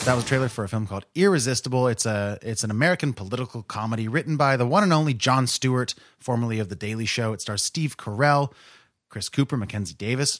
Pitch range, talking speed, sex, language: 105-130 Hz, 215 wpm, male, English